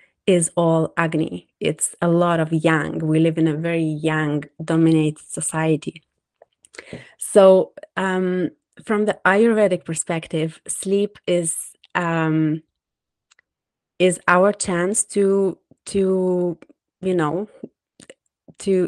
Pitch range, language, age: 165-195 Hz, English, 20-39